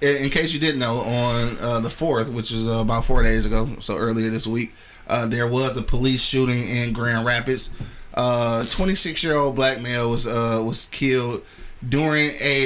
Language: English